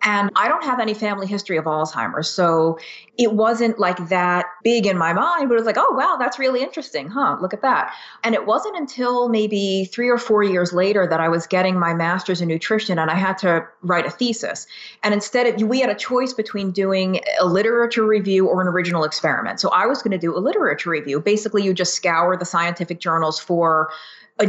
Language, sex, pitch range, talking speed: English, female, 175-235 Hz, 220 wpm